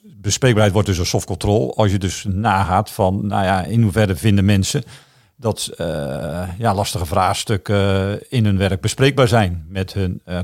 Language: Dutch